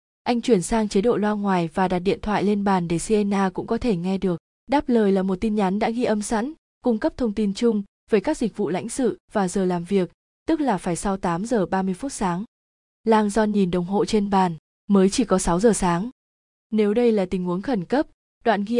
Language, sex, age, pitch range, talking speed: Vietnamese, female, 20-39, 190-230 Hz, 245 wpm